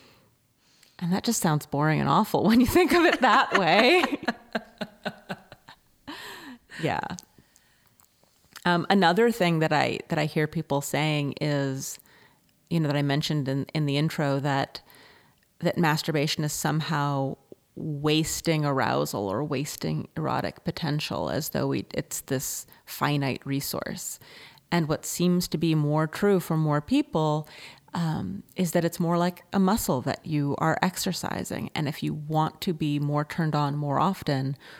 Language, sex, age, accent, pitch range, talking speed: English, female, 30-49, American, 145-175 Hz, 150 wpm